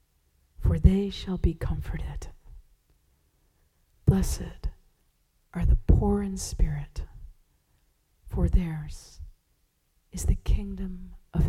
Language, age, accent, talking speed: English, 40-59, American, 90 wpm